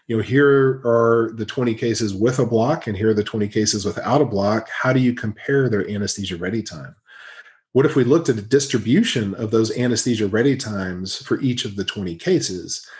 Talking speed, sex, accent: 210 wpm, male, American